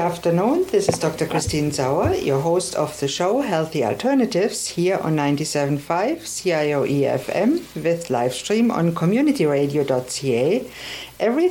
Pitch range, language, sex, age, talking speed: 140-215 Hz, English, female, 60-79, 130 wpm